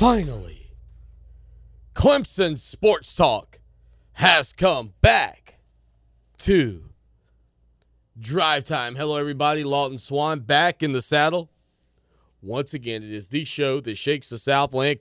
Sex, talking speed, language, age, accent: male, 110 wpm, English, 30-49, American